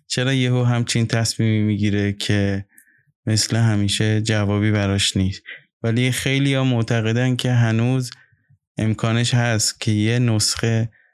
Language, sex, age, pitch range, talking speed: Persian, male, 20-39, 100-115 Hz, 130 wpm